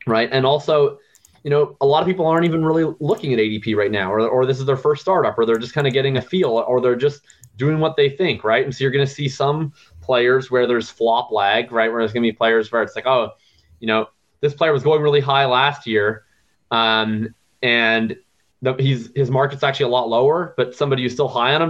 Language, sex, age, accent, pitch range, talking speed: English, male, 20-39, American, 115-140 Hz, 250 wpm